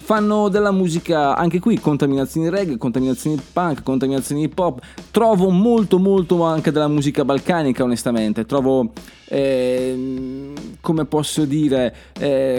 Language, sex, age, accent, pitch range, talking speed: Italian, male, 20-39, native, 120-170 Hz, 125 wpm